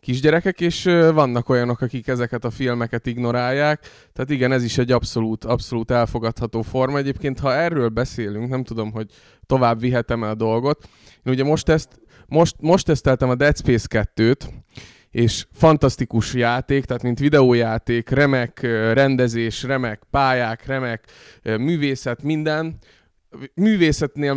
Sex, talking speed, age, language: male, 135 wpm, 20-39, Hungarian